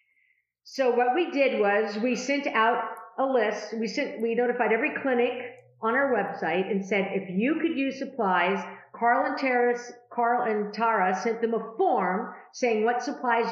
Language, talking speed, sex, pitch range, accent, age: English, 175 wpm, female, 210-275 Hz, American, 50-69